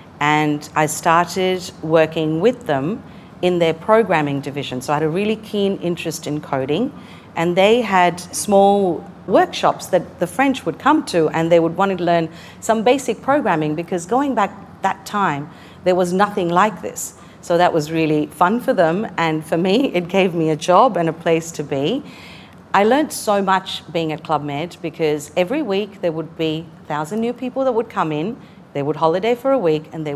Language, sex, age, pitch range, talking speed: English, female, 40-59, 155-195 Hz, 195 wpm